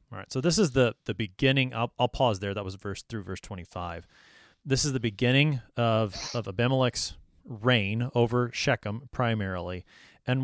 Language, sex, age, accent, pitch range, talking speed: English, male, 30-49, American, 105-130 Hz, 170 wpm